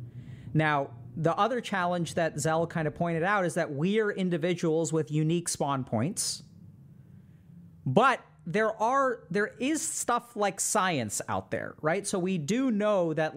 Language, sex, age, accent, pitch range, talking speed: English, male, 40-59, American, 135-185 Hz, 155 wpm